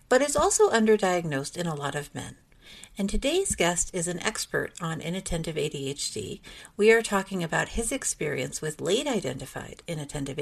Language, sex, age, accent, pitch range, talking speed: English, female, 50-69, American, 150-205 Hz, 155 wpm